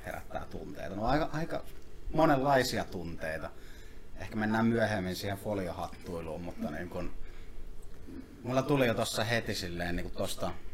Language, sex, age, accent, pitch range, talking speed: Finnish, male, 30-49, native, 85-105 Hz, 130 wpm